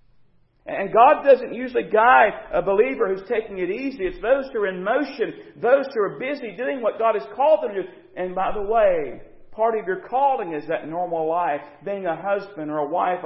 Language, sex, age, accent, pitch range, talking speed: English, male, 50-69, American, 150-220 Hz, 215 wpm